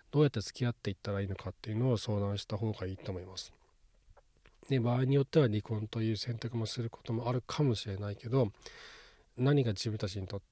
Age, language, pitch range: 40-59, Japanese, 95-120 Hz